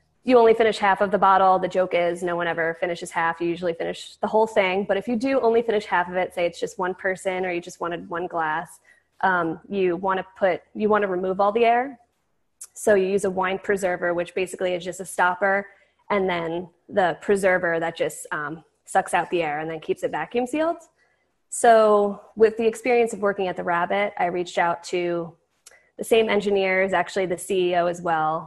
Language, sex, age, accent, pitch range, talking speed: English, female, 20-39, American, 175-210 Hz, 215 wpm